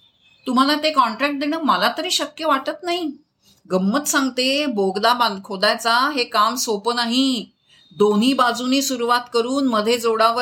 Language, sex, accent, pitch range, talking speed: Marathi, female, native, 220-280 Hz, 70 wpm